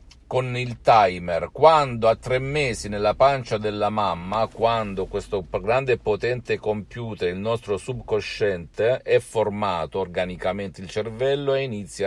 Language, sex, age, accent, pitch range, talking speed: Italian, male, 50-69, native, 90-125 Hz, 135 wpm